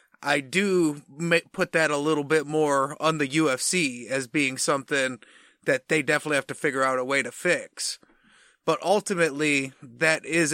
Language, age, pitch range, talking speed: English, 30-49, 140-170 Hz, 165 wpm